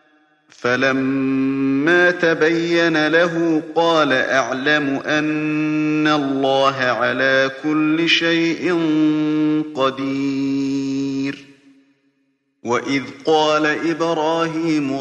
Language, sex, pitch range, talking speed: Russian, male, 135-155 Hz, 55 wpm